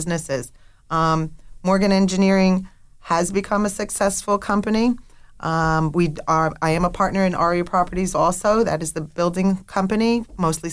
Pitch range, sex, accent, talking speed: 160-195 Hz, female, American, 145 wpm